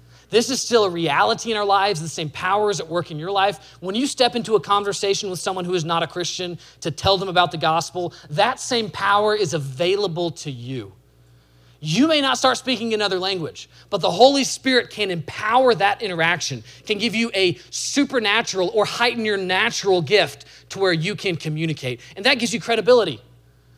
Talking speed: 195 wpm